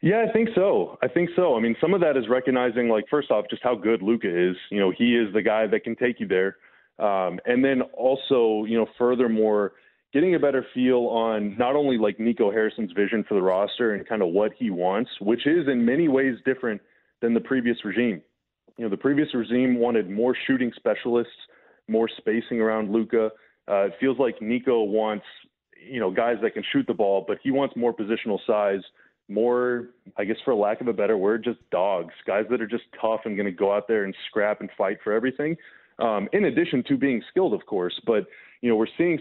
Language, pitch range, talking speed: English, 110-125 Hz, 220 wpm